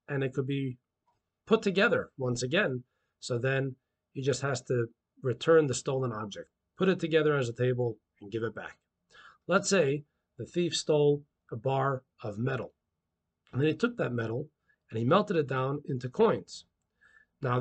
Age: 40-59